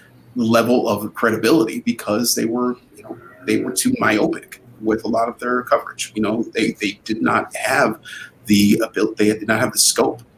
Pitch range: 110-125 Hz